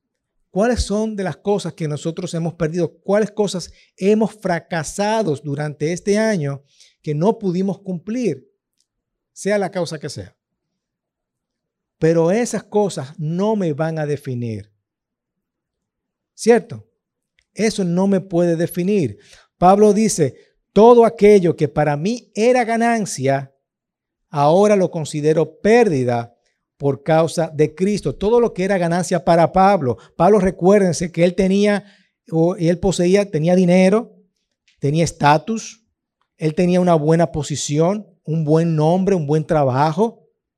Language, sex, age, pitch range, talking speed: Spanish, male, 50-69, 160-215 Hz, 125 wpm